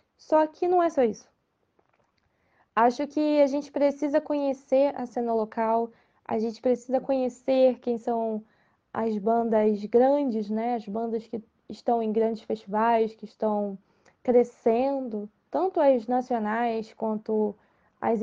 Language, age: Portuguese, 10-29